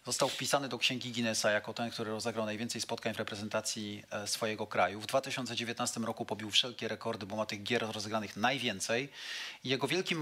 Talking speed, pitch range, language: 170 wpm, 115-145 Hz, Polish